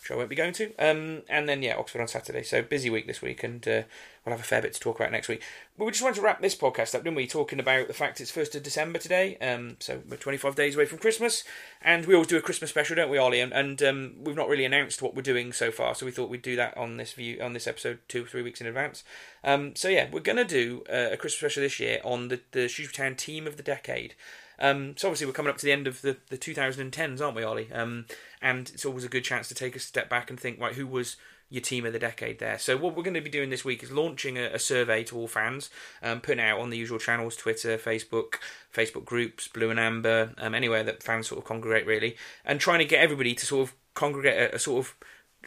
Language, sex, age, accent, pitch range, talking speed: English, male, 30-49, British, 120-150 Hz, 280 wpm